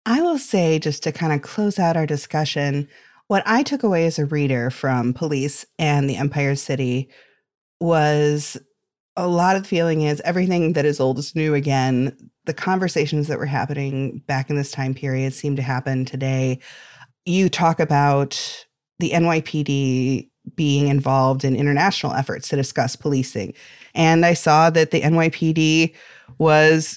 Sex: female